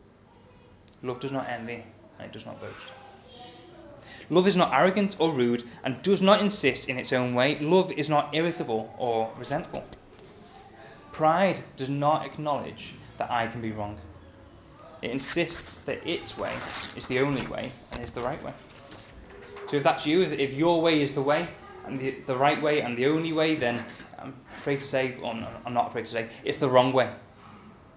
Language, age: English, 10-29